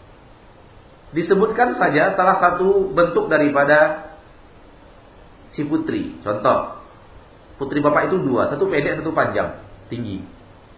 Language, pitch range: Malay, 105-155 Hz